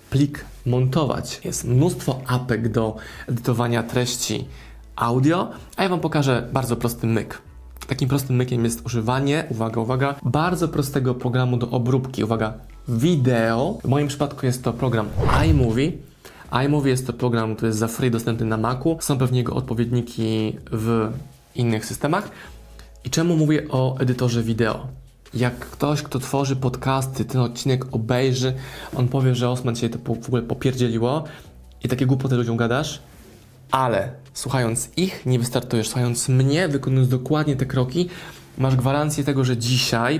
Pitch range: 120-135 Hz